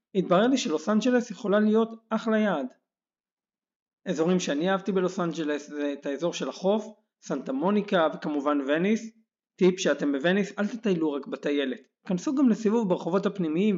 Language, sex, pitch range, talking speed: Hebrew, male, 165-215 Hz, 150 wpm